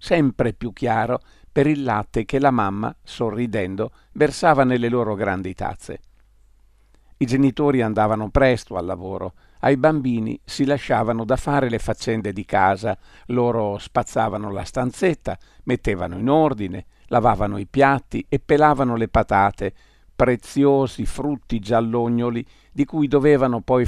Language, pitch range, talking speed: Italian, 105-135 Hz, 130 wpm